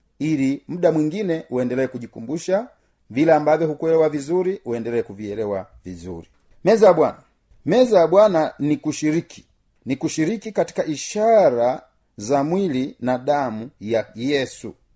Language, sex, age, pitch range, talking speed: Swahili, male, 40-59, 130-175 Hz, 120 wpm